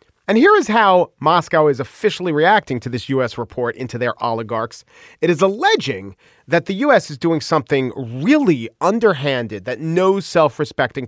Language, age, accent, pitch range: English, 40-59, American, 140-185 Hz